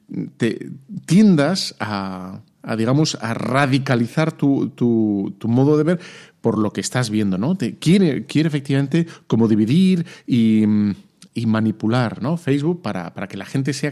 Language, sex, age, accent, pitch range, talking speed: Spanish, male, 40-59, Spanish, 105-150 Hz, 155 wpm